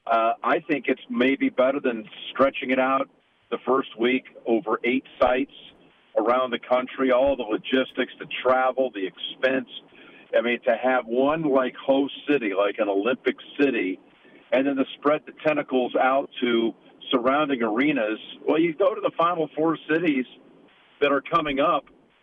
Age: 50-69